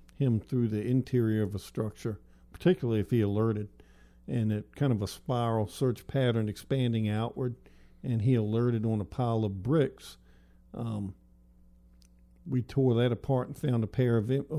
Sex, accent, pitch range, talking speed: male, American, 95-125 Hz, 165 wpm